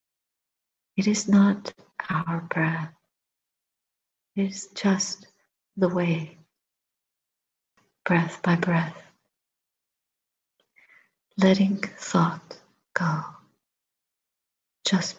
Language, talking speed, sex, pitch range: English, 65 wpm, female, 175-195 Hz